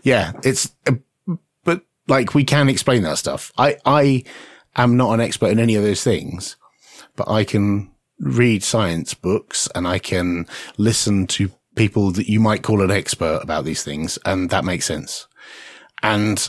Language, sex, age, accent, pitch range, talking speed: English, male, 30-49, British, 90-115 Hz, 165 wpm